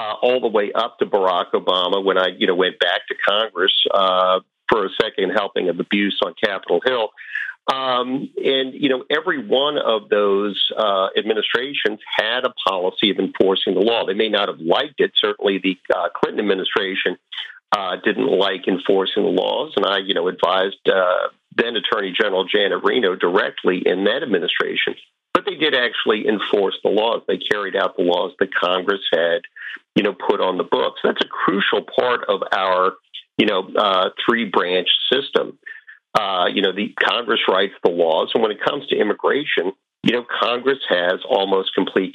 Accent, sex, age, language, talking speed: American, male, 50-69, English, 180 wpm